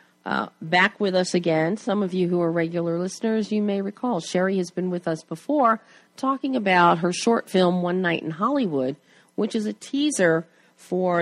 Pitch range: 160-200 Hz